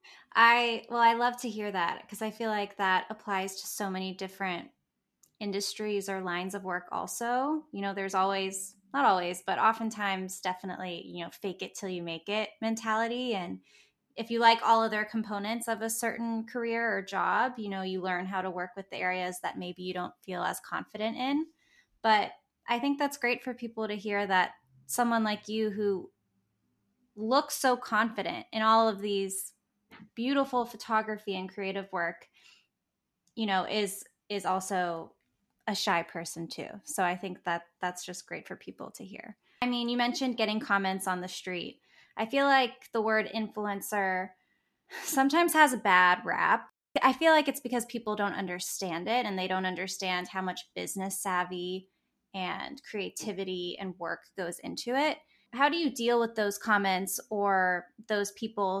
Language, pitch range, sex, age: English, 185-230 Hz, female, 10-29